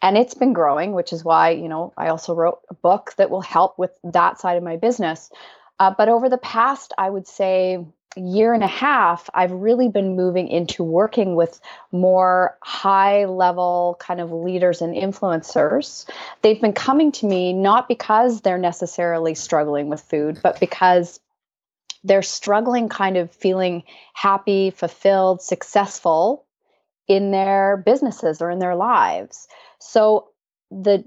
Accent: American